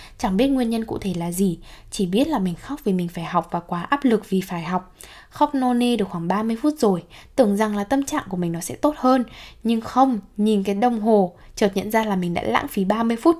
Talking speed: 260 wpm